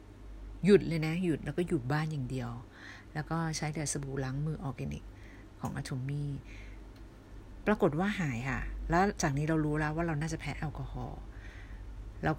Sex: female